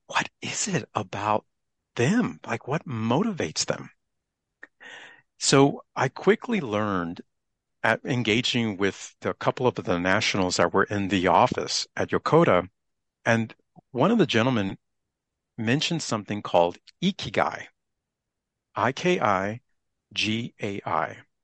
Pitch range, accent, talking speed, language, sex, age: 95-140 Hz, American, 105 wpm, English, male, 50-69